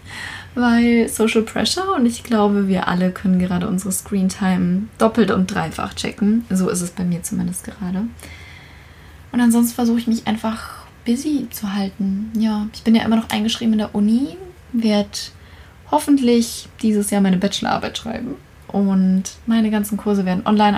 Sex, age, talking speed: female, 20-39, 160 wpm